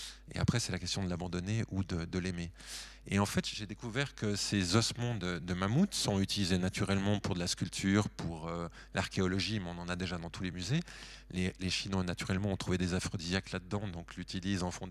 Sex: male